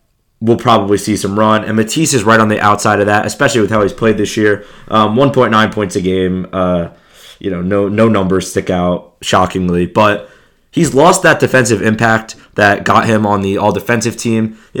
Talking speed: 210 wpm